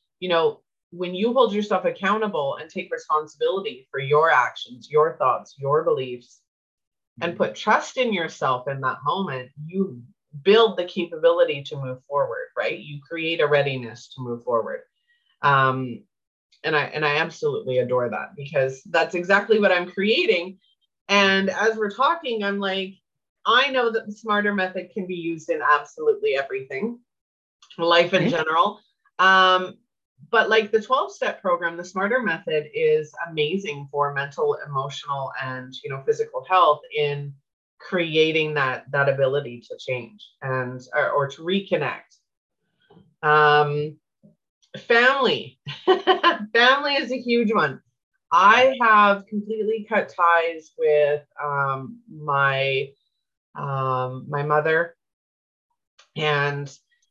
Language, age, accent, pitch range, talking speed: English, 30-49, American, 145-225 Hz, 130 wpm